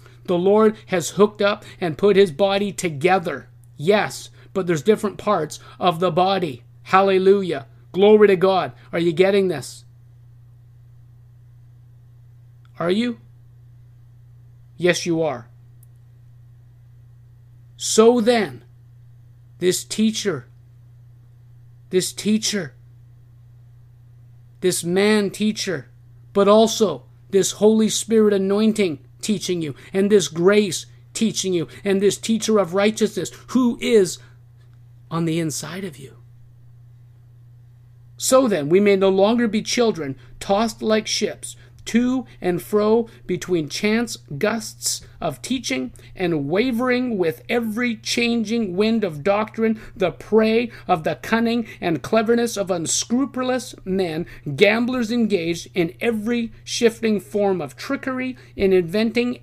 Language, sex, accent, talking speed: English, male, American, 115 wpm